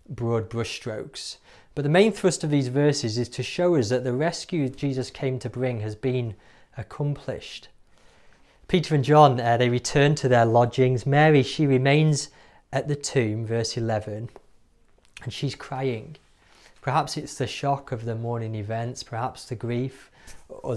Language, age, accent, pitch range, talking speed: English, 30-49, British, 115-145 Hz, 160 wpm